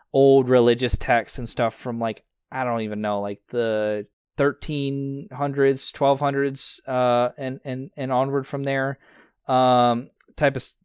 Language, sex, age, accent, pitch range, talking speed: English, male, 20-39, American, 120-140 Hz, 135 wpm